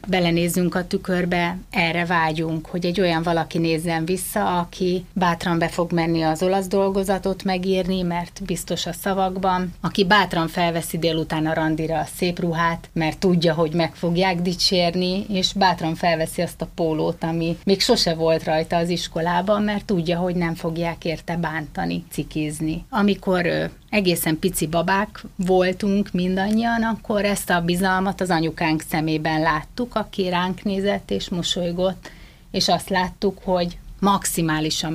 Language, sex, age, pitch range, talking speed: Hungarian, female, 30-49, 165-190 Hz, 145 wpm